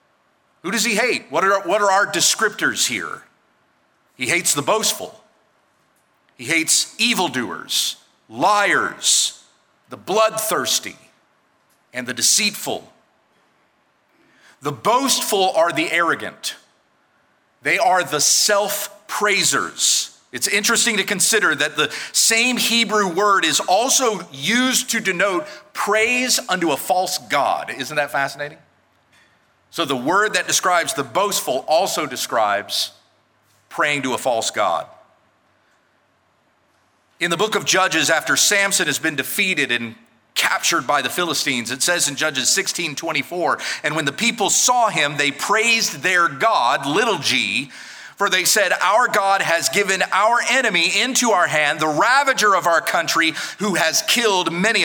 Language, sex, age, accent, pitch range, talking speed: English, male, 50-69, American, 150-220 Hz, 135 wpm